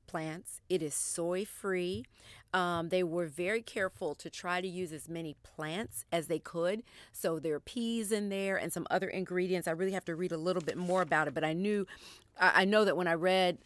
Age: 40-59